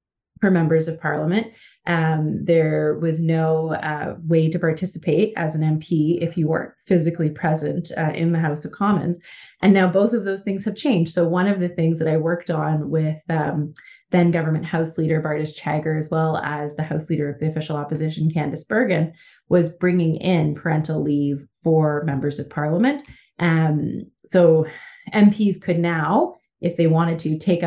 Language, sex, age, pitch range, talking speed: English, female, 30-49, 155-180 Hz, 180 wpm